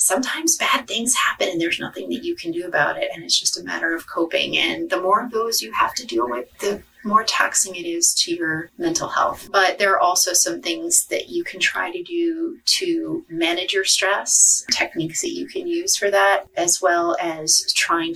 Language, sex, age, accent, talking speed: English, female, 30-49, American, 220 wpm